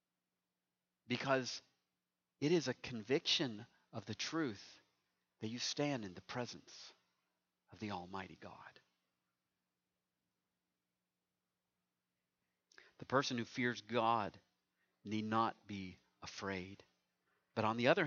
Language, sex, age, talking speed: English, male, 50-69, 105 wpm